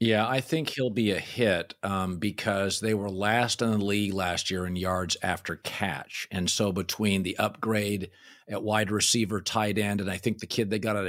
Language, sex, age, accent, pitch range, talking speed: English, male, 50-69, American, 105-135 Hz, 210 wpm